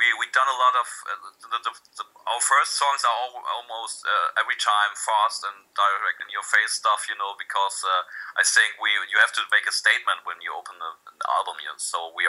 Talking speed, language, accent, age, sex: 240 wpm, English, German, 40-59, male